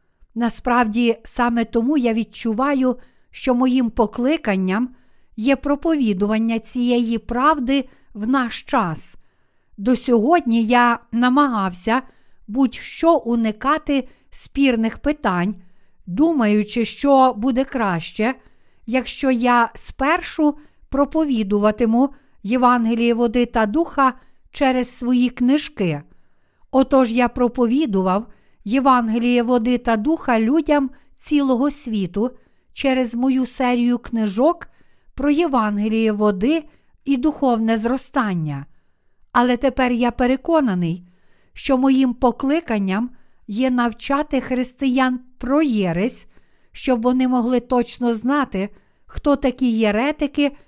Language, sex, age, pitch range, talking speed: Ukrainian, female, 50-69, 225-270 Hz, 90 wpm